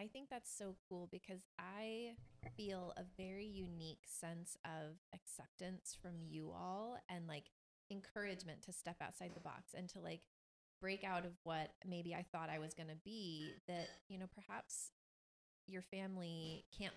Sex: female